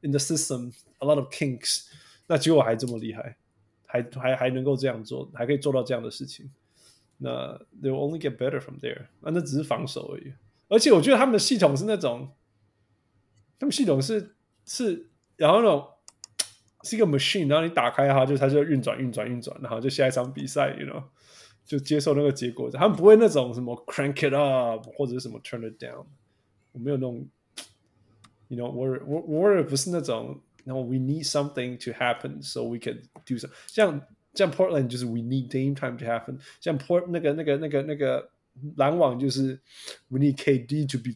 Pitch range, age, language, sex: 120-145 Hz, 20-39, Chinese, male